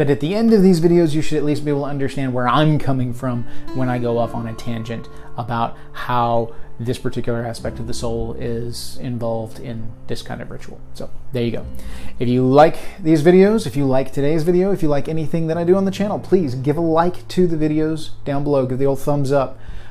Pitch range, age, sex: 125-165 Hz, 30-49, male